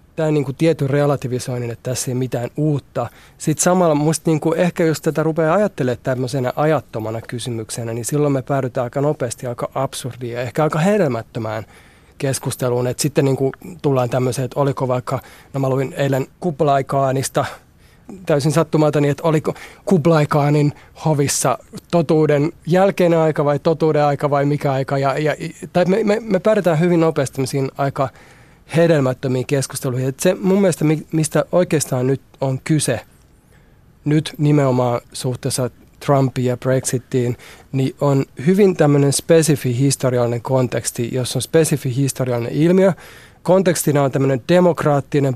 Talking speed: 135 wpm